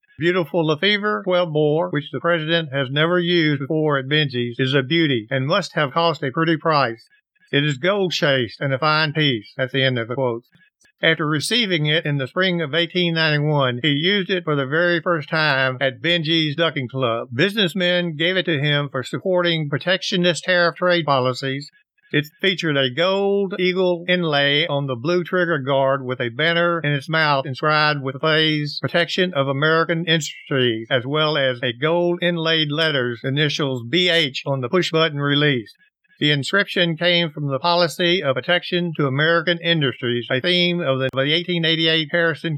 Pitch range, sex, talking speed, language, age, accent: 140-175 Hz, male, 170 wpm, English, 50-69, American